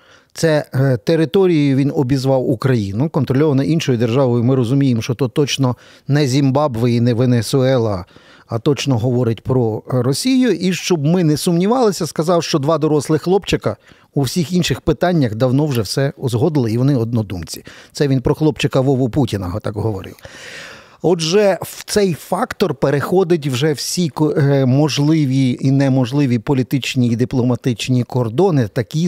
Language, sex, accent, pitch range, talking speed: Ukrainian, male, native, 125-155 Hz, 140 wpm